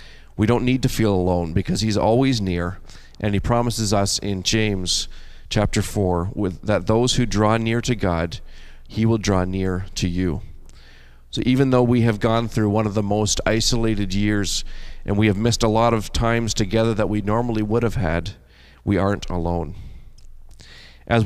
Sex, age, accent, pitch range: male, 40-59, American, 90-115 Hz